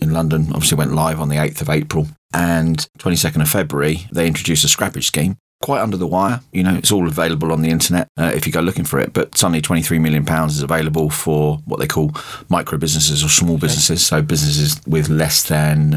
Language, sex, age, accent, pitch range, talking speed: English, male, 30-49, British, 75-85 Hz, 220 wpm